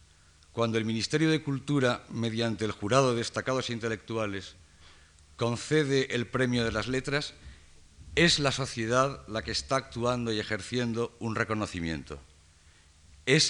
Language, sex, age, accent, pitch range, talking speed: Spanish, male, 50-69, Spanish, 80-130 Hz, 130 wpm